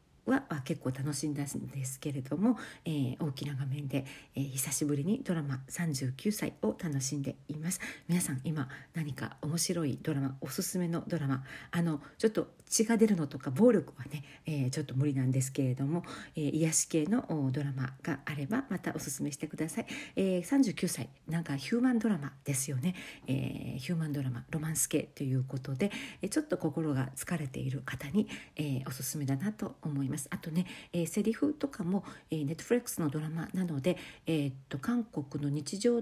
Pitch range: 140-180 Hz